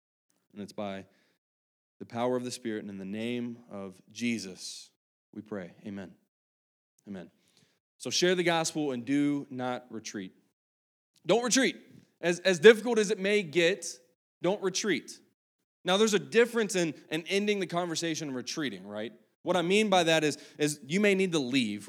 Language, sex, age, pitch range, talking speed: English, male, 20-39, 125-180 Hz, 165 wpm